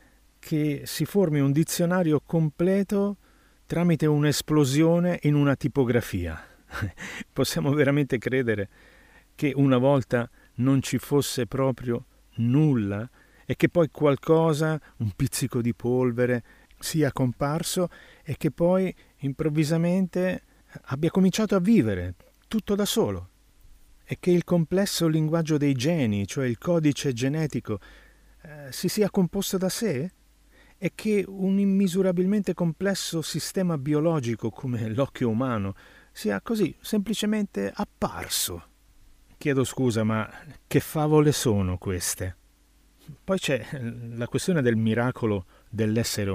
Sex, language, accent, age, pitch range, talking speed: male, Italian, native, 50-69, 120-175 Hz, 115 wpm